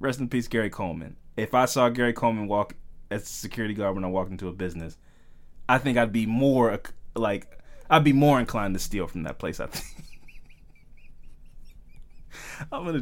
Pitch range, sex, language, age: 105-145 Hz, male, English, 20-39